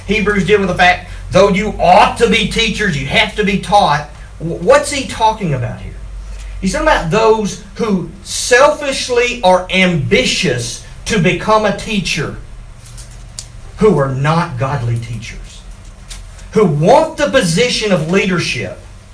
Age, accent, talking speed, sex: 50-69, American, 140 wpm, male